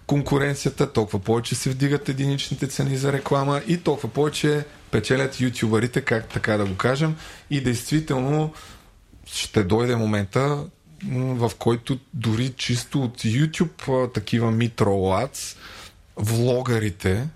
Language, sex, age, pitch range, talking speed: Bulgarian, male, 20-39, 105-140 Hz, 115 wpm